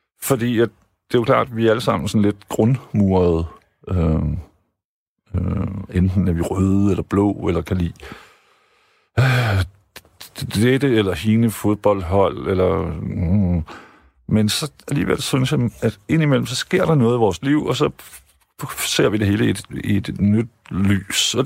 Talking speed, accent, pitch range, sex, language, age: 180 wpm, native, 95-125 Hz, male, Danish, 50-69